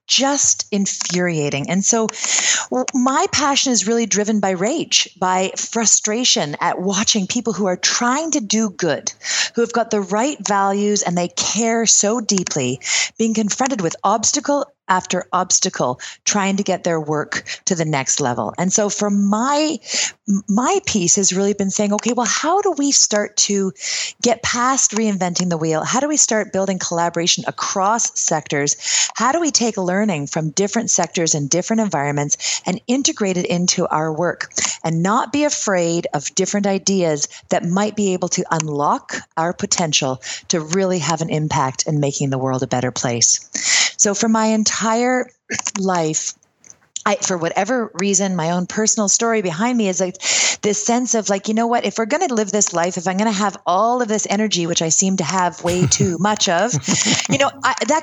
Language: English